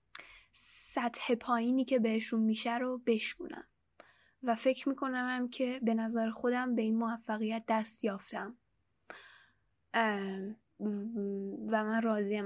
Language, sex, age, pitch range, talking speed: Persian, female, 10-29, 205-245 Hz, 105 wpm